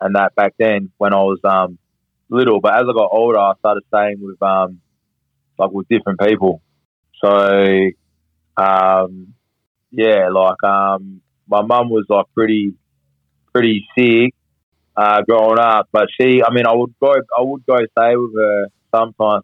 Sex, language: male, English